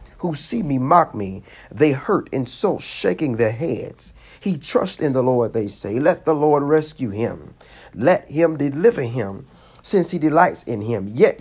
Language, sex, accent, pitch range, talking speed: English, male, American, 120-160 Hz, 175 wpm